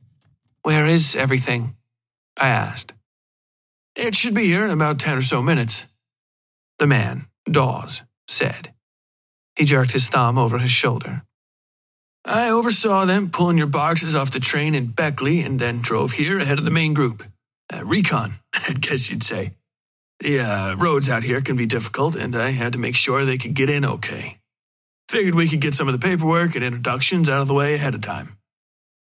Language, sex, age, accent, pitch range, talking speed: English, male, 40-59, American, 120-145 Hz, 180 wpm